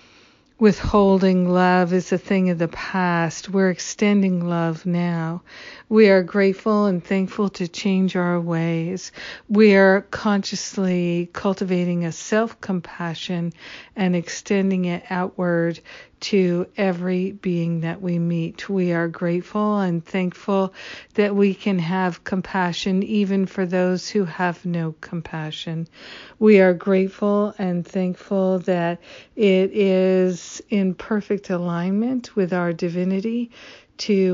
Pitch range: 175-195 Hz